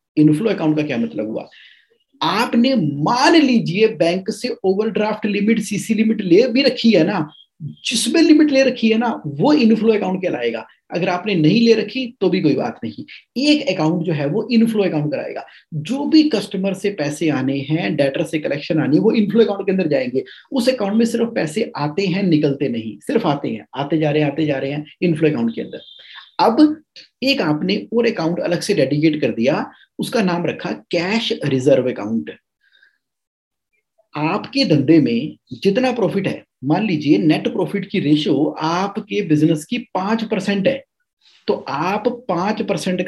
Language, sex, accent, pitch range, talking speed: English, male, Indian, 155-235 Hz, 145 wpm